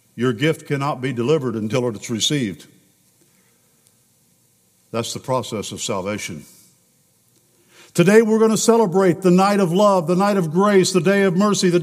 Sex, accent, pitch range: male, American, 130-185 Hz